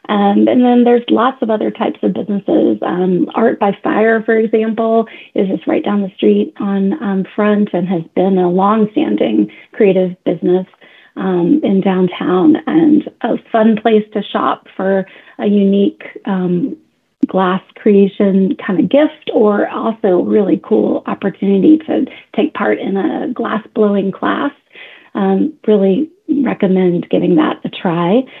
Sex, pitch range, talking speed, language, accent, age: female, 195-245 Hz, 150 wpm, English, American, 30-49